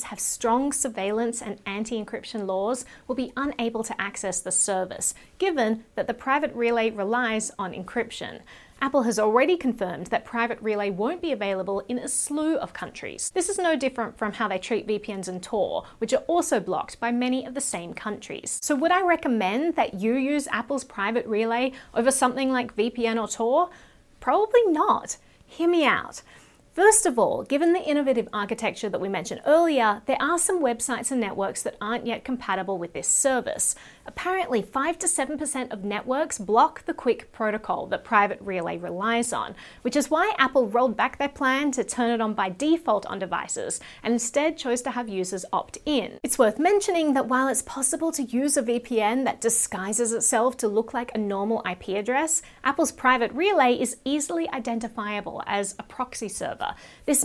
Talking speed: 180 wpm